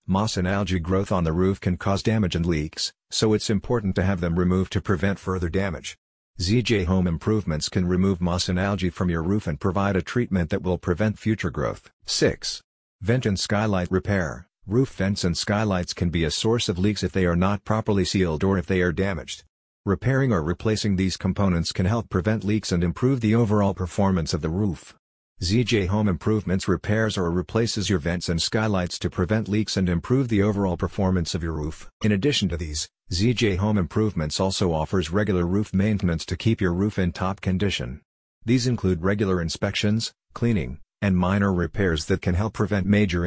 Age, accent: 50-69, American